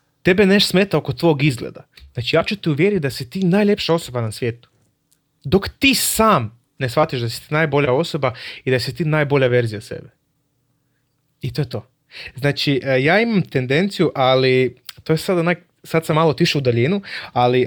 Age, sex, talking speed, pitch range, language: 30-49, male, 185 wpm, 125-170 Hz, Croatian